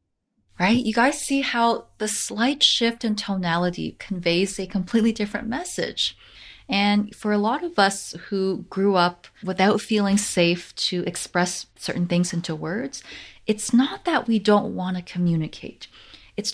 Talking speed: 150 wpm